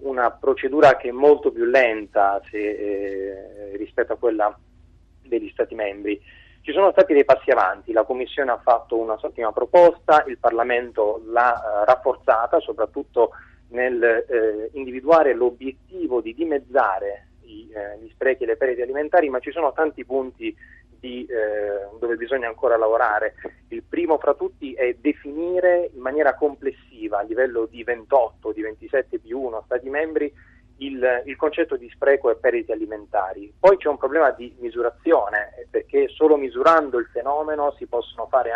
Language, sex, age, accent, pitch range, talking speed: Italian, male, 30-49, native, 115-190 Hz, 155 wpm